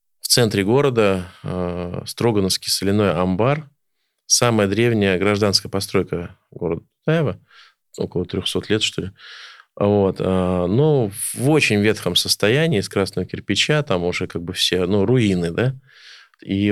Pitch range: 95-115 Hz